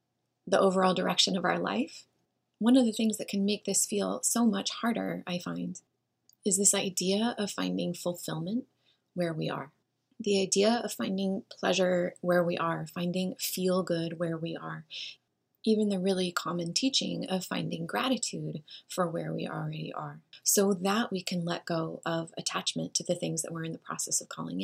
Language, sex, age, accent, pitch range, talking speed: English, female, 20-39, American, 165-200 Hz, 180 wpm